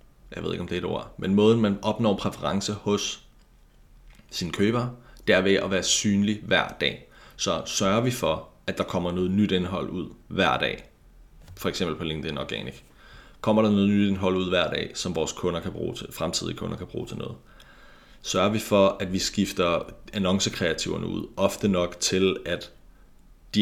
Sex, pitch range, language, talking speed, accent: male, 90-100 Hz, Danish, 190 wpm, native